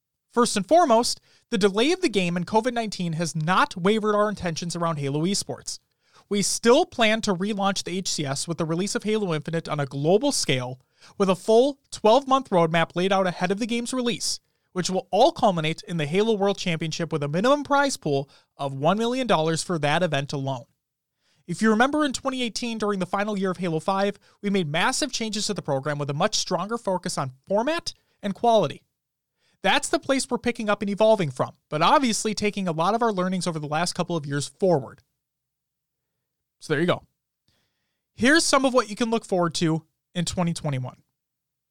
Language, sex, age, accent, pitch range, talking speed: English, male, 30-49, American, 165-230 Hz, 195 wpm